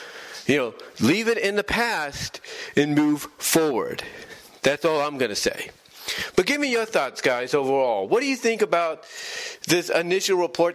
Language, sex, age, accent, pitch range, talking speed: English, male, 40-59, American, 150-215 Hz, 175 wpm